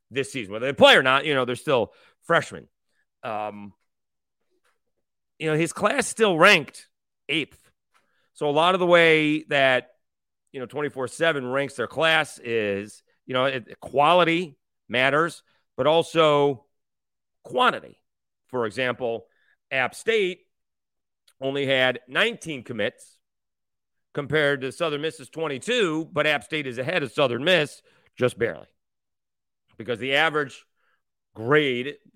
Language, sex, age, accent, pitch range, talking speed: English, male, 40-59, American, 115-160 Hz, 125 wpm